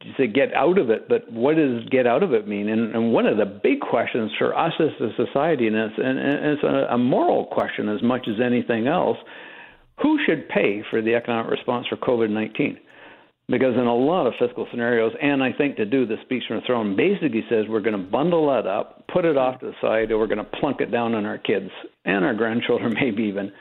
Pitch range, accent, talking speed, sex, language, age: 110-140 Hz, American, 240 wpm, male, English, 60-79